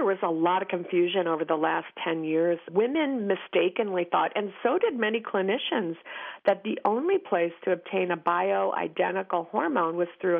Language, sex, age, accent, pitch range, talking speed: English, female, 50-69, American, 175-225 Hz, 175 wpm